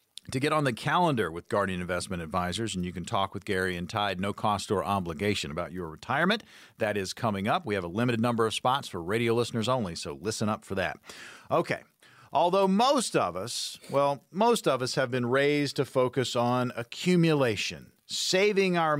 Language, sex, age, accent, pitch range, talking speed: English, male, 40-59, American, 115-165 Hz, 195 wpm